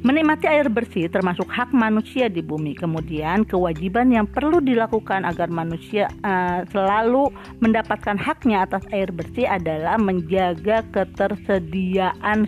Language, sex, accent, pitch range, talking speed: Indonesian, female, native, 175-235 Hz, 120 wpm